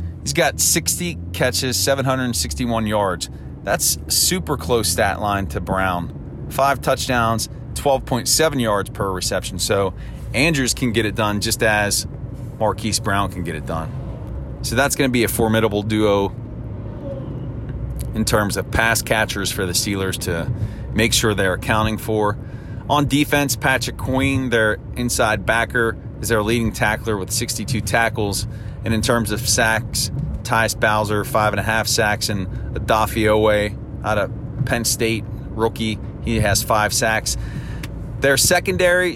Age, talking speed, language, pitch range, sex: 30-49, 145 wpm, English, 105-125 Hz, male